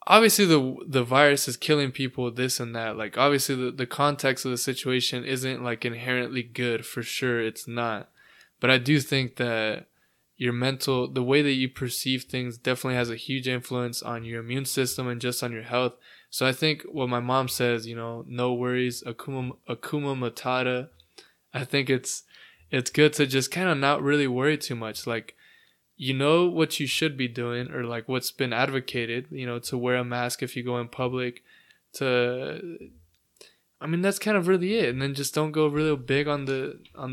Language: English